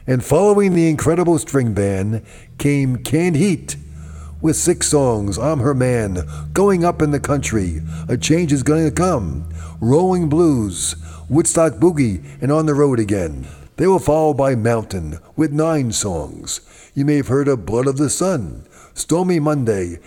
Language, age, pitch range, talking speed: English, 50-69, 110-150 Hz, 160 wpm